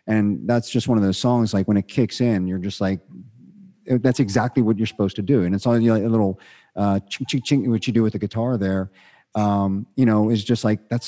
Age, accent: 50-69, American